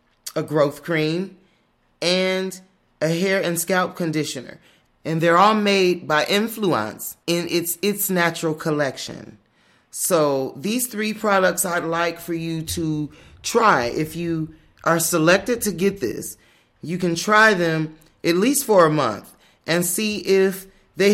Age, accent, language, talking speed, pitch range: 30-49, American, English, 140 wpm, 150-185 Hz